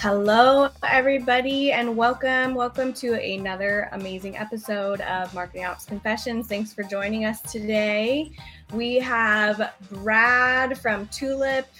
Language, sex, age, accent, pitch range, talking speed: English, female, 20-39, American, 195-240 Hz, 115 wpm